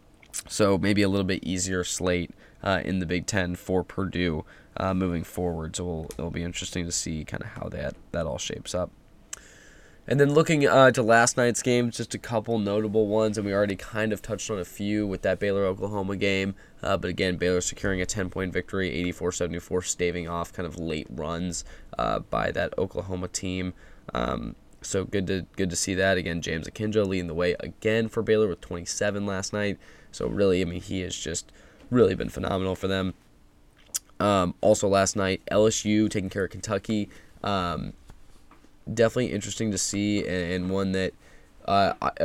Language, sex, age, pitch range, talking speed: English, male, 10-29, 90-105 Hz, 180 wpm